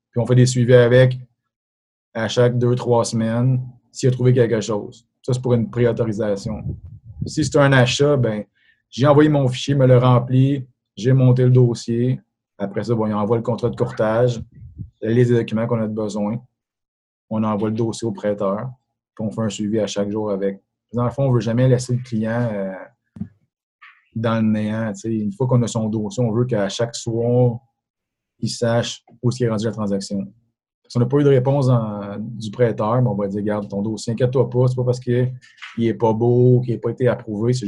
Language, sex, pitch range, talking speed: French, male, 110-125 Hz, 210 wpm